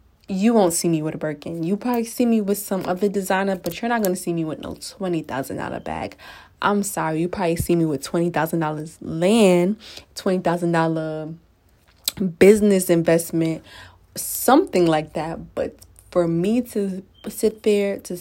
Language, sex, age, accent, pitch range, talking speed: English, female, 20-39, American, 165-205 Hz, 180 wpm